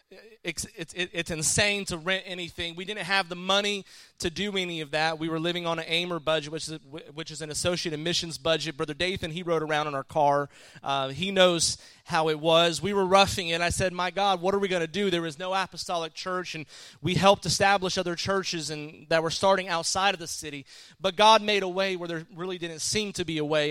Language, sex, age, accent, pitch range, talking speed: English, male, 30-49, American, 145-175 Hz, 240 wpm